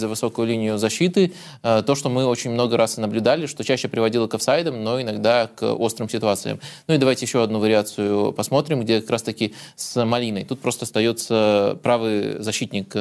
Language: Russian